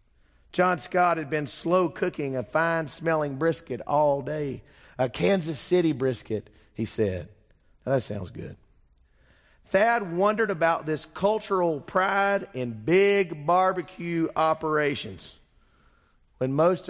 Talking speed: 115 wpm